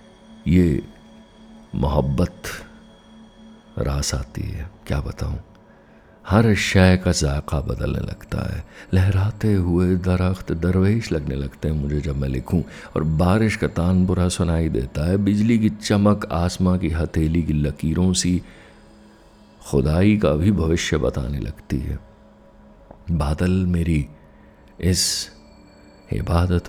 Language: Hindi